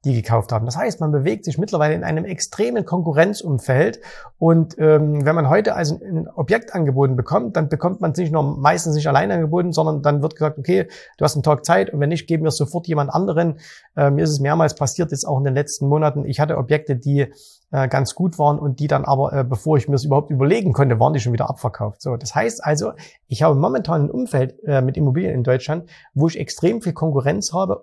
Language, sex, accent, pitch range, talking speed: German, male, German, 140-170 Hz, 235 wpm